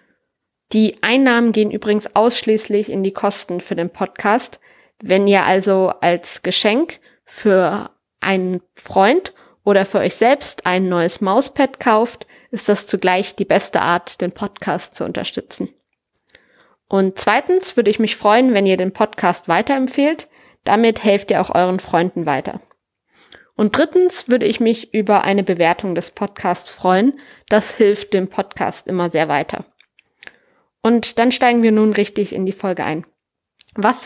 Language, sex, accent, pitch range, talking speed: German, female, German, 185-220 Hz, 150 wpm